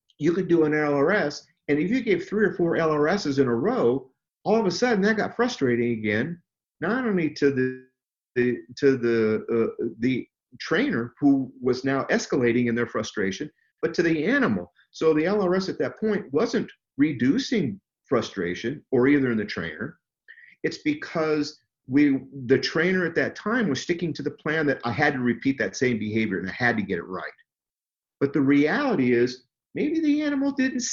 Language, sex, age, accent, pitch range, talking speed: English, male, 50-69, American, 135-215 Hz, 185 wpm